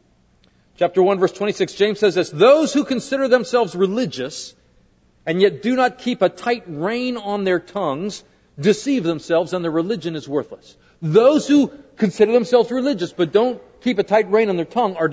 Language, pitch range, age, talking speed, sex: English, 170-220 Hz, 50-69, 180 wpm, male